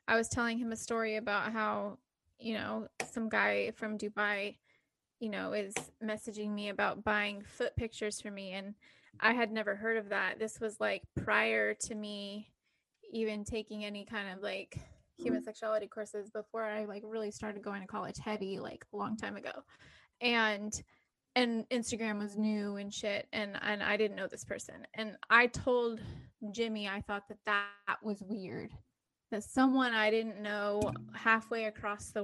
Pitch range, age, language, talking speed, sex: 205-230 Hz, 10-29, English, 175 wpm, female